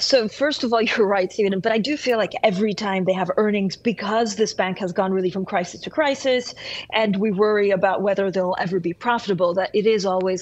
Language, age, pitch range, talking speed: English, 40-59, 185-225 Hz, 230 wpm